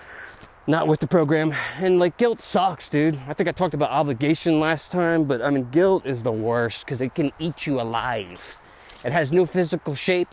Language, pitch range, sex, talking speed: English, 130-170 Hz, male, 205 wpm